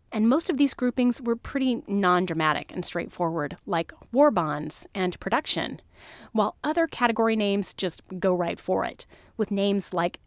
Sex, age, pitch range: female, 30-49, 175-230 Hz